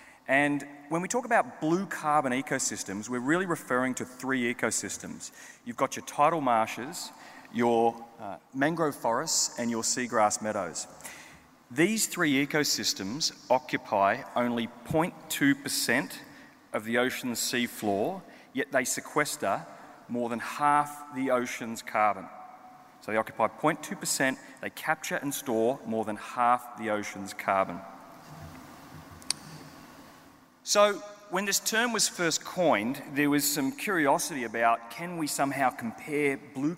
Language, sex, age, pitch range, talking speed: English, male, 30-49, 115-155 Hz, 125 wpm